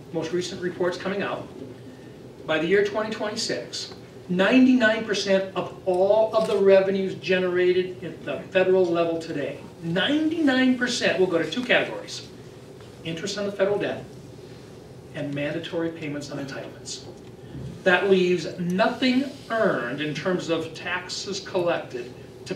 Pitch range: 165-210 Hz